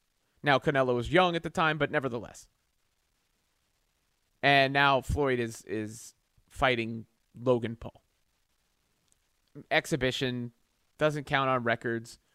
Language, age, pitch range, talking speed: English, 30-49, 115-155 Hz, 105 wpm